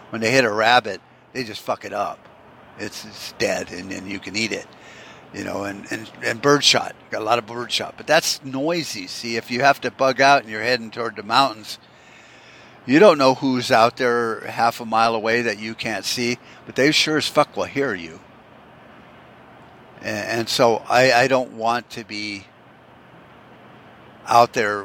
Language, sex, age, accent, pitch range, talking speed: English, male, 50-69, American, 110-135 Hz, 190 wpm